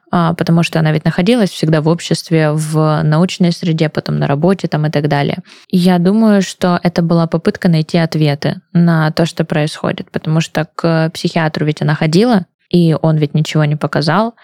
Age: 20-39